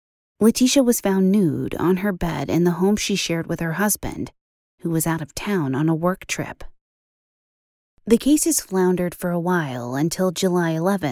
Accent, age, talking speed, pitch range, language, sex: American, 30-49, 180 wpm, 155-195 Hz, English, female